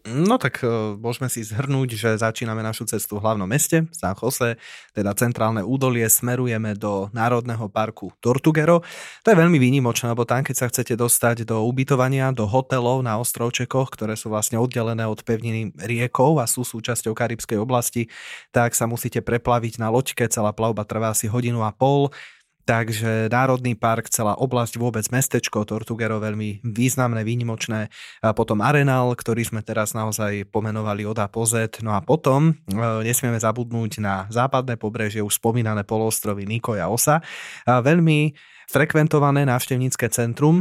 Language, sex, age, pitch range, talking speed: Slovak, male, 20-39, 110-125 Hz, 150 wpm